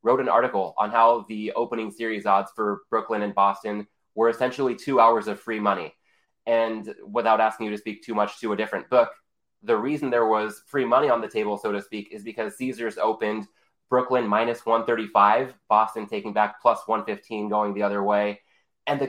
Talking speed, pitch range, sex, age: 195 wpm, 105-125 Hz, male, 20-39